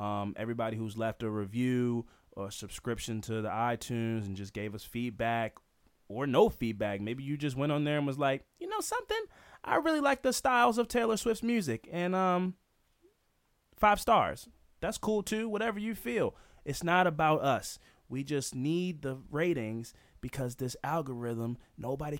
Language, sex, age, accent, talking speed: English, male, 20-39, American, 170 wpm